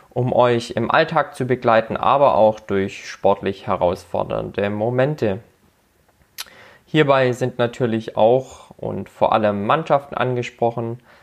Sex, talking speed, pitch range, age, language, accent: male, 110 wpm, 115-135 Hz, 20-39, German, German